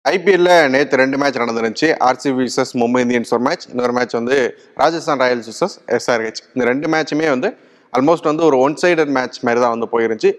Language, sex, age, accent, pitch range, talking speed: Tamil, male, 30-49, native, 115-140 Hz, 175 wpm